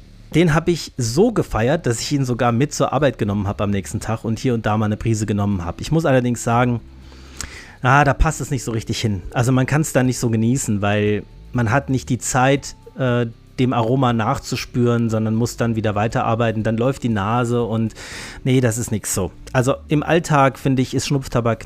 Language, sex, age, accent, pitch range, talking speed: German, male, 40-59, German, 105-135 Hz, 215 wpm